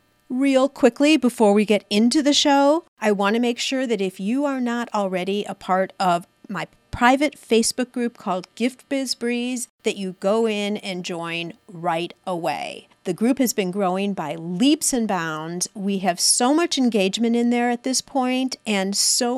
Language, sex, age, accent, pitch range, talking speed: English, female, 40-59, American, 195-260 Hz, 185 wpm